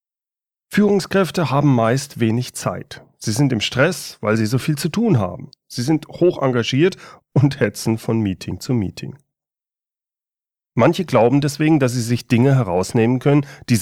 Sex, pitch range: male, 105-145 Hz